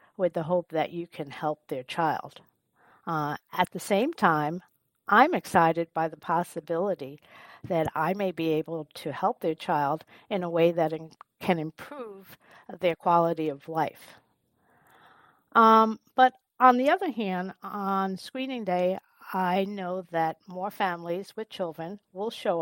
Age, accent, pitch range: 50-69, American, 165-205 Hz